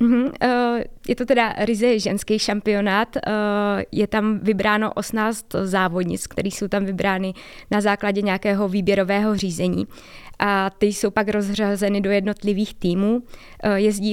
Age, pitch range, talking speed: 20-39, 200-220 Hz, 125 wpm